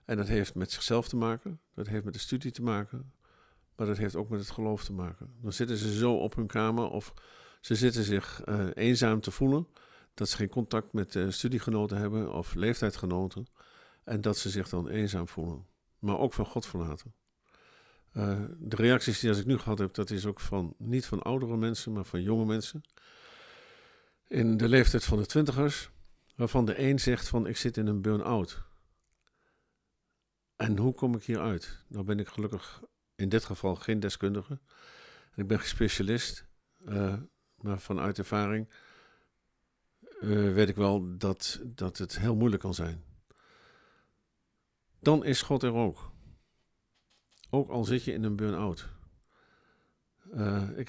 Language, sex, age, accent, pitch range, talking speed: Dutch, male, 50-69, Dutch, 100-120 Hz, 170 wpm